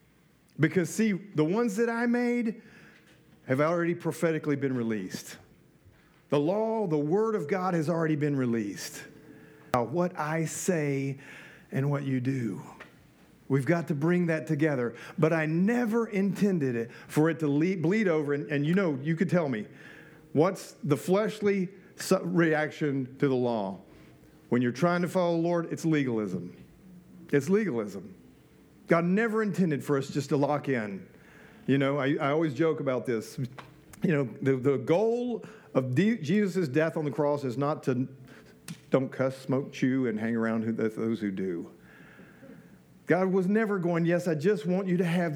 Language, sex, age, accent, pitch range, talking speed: English, male, 50-69, American, 140-190 Hz, 165 wpm